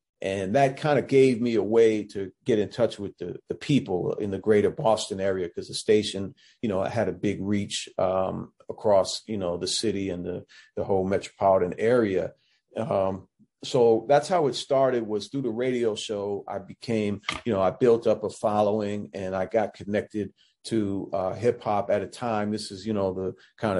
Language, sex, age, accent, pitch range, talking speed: English, male, 40-59, American, 95-115 Hz, 200 wpm